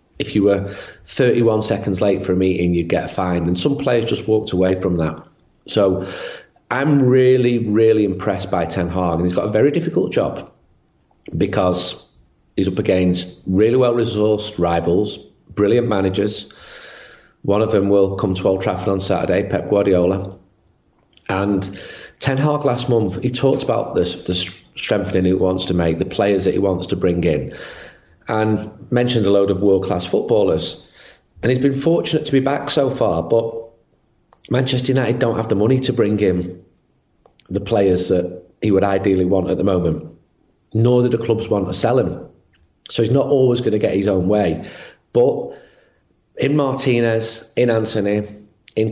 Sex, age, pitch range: male, 40-59, 90-115 Hz